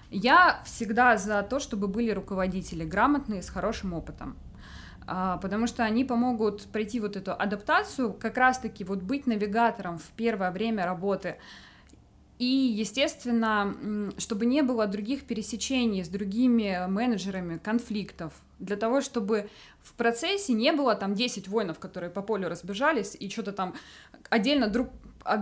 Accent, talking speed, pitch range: native, 140 wpm, 195-245 Hz